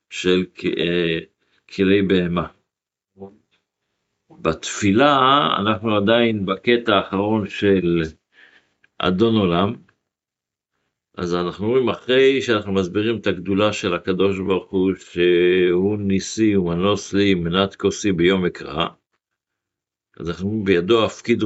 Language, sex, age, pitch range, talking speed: Hebrew, male, 50-69, 90-115 Hz, 90 wpm